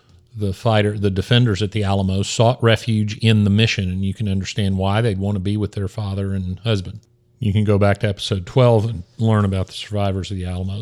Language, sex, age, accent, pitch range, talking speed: English, male, 50-69, American, 100-120 Hz, 225 wpm